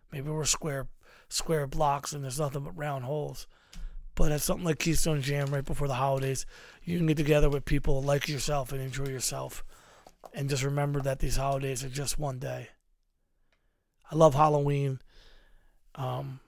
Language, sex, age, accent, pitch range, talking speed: English, male, 30-49, American, 130-150 Hz, 170 wpm